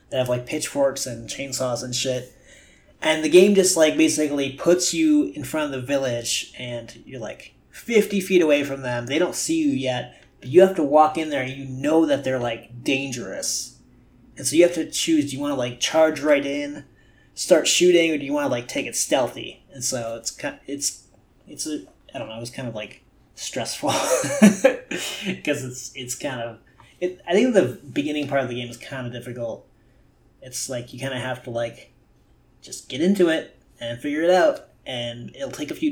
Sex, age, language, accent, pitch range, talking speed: male, 30-49, English, American, 125-170 Hz, 210 wpm